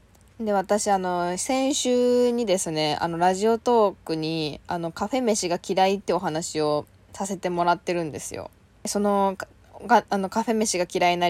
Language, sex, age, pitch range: Japanese, female, 10-29, 170-230 Hz